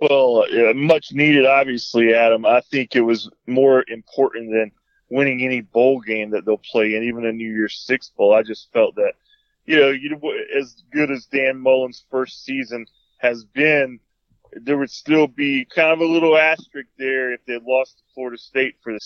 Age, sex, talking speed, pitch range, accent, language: 20-39, male, 190 wpm, 125-140 Hz, American, English